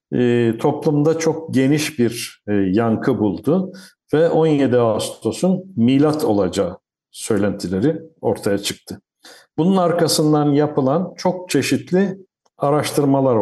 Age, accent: 60-79, native